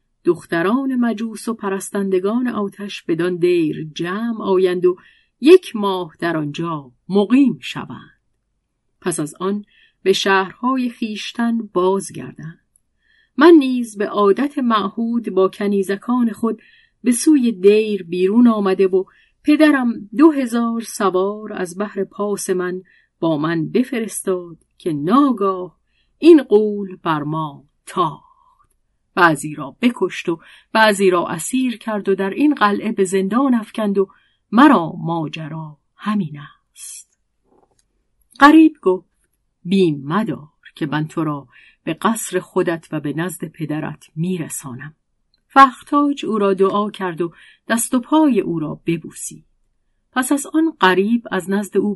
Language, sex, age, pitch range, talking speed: Persian, female, 40-59, 170-230 Hz, 125 wpm